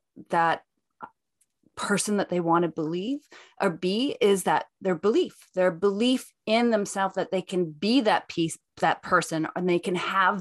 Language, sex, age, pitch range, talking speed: English, female, 30-49, 170-240 Hz, 165 wpm